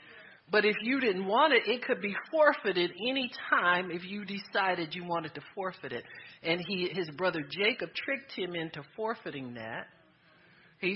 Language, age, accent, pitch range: English, 50-69, American, 155-210 Hz